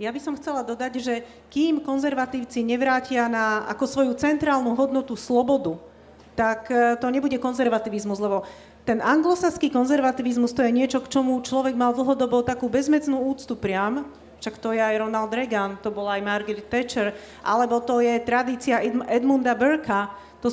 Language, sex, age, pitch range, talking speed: Slovak, female, 40-59, 215-270 Hz, 155 wpm